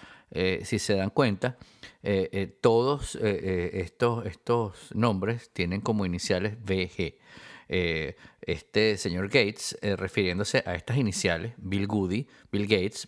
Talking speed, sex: 125 wpm, male